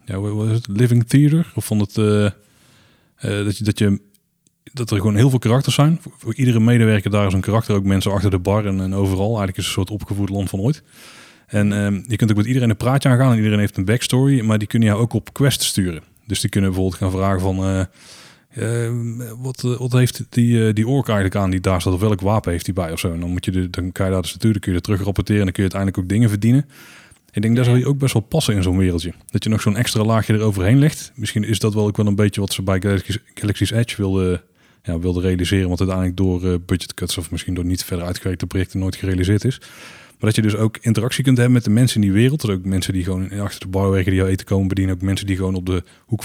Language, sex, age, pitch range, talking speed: Dutch, male, 30-49, 95-120 Hz, 275 wpm